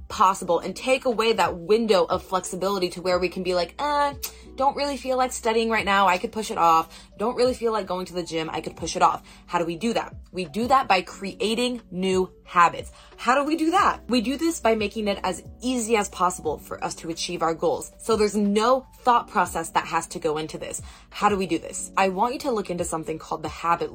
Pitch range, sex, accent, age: 175-225 Hz, female, American, 20-39